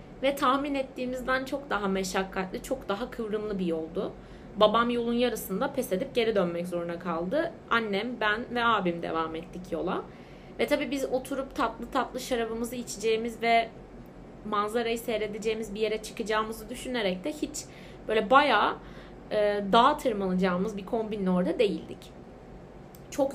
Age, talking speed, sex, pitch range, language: 30-49, 140 wpm, female, 200-255 Hz, Turkish